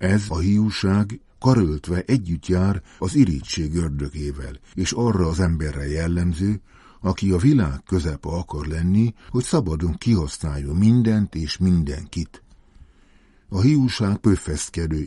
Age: 60-79